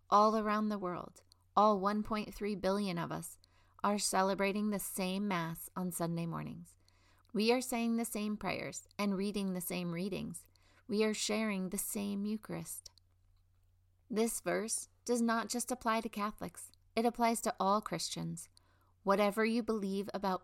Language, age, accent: English, 30-49, American